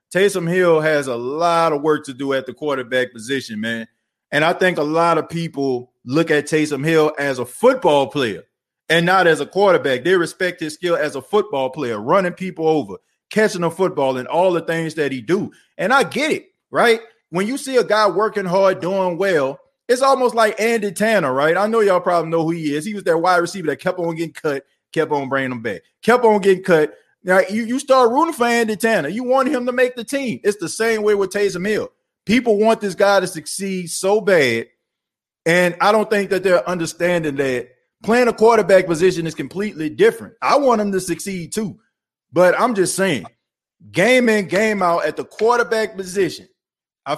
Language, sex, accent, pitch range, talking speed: English, male, American, 155-215 Hz, 210 wpm